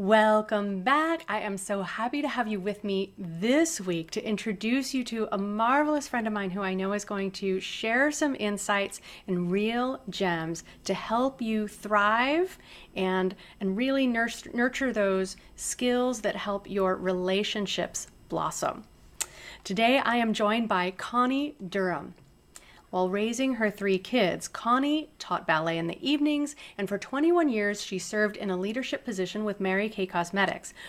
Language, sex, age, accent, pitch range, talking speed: English, female, 30-49, American, 190-245 Hz, 155 wpm